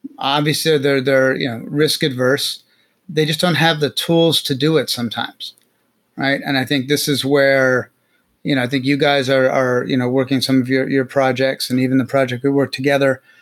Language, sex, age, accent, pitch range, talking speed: English, male, 30-49, American, 130-145 Hz, 210 wpm